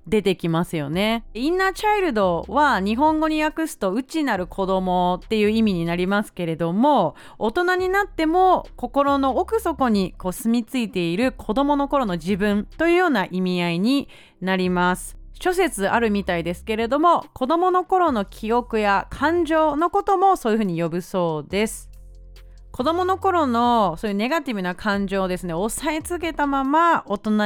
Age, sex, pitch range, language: 30-49, female, 185-310 Hz, Japanese